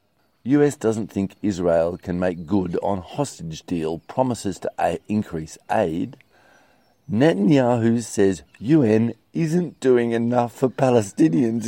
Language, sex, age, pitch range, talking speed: English, male, 50-69, 95-125 Hz, 120 wpm